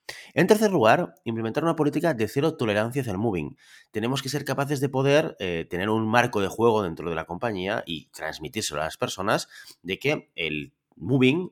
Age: 30-49